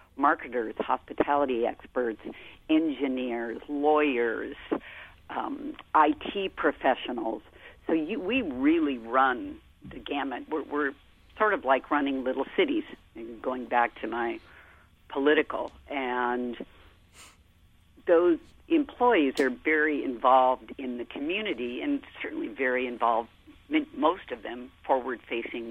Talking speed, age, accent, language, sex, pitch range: 105 wpm, 50-69, American, English, female, 120-185 Hz